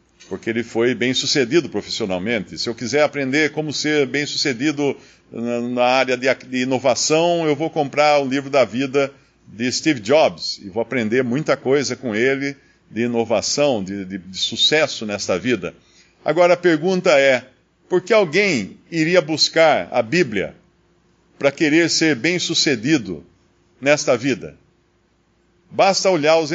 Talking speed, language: 140 wpm, Portuguese